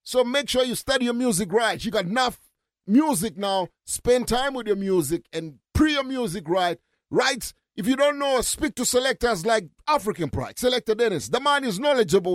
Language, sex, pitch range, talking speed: English, male, 190-235 Hz, 195 wpm